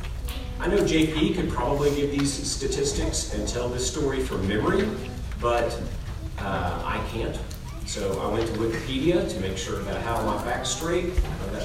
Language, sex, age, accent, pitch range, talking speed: English, male, 40-59, American, 100-140 Hz, 170 wpm